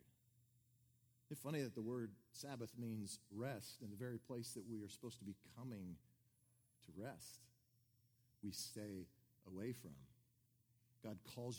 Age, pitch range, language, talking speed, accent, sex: 40-59, 115-130 Hz, English, 140 wpm, American, male